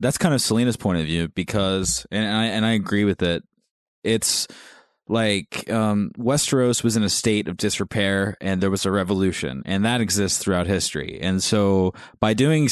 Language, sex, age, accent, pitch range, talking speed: English, male, 20-39, American, 95-115 Hz, 185 wpm